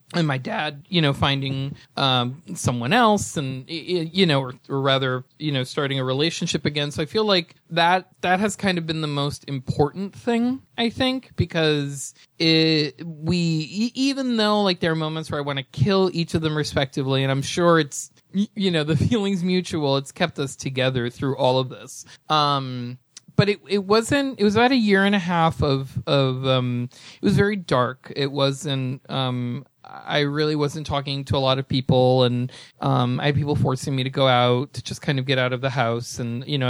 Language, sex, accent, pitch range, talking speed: English, male, American, 130-170 Hz, 205 wpm